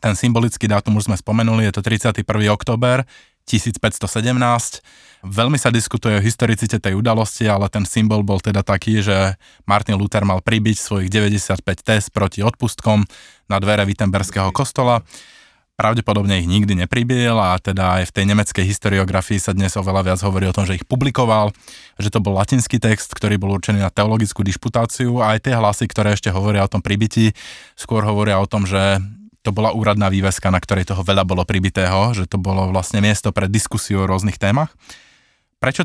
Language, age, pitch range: Slovak, 20-39, 100-115 Hz